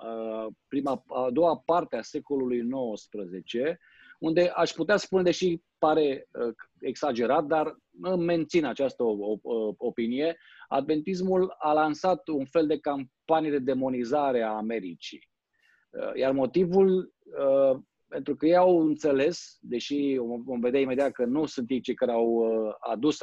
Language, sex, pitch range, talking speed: Romanian, male, 120-170 Hz, 125 wpm